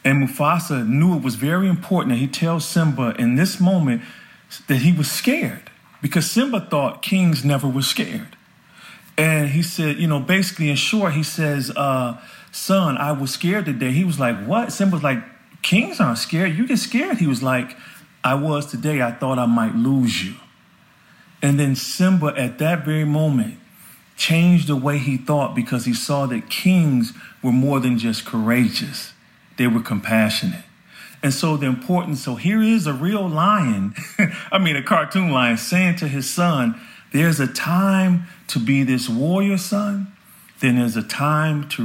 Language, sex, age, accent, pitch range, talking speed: English, male, 40-59, American, 130-180 Hz, 175 wpm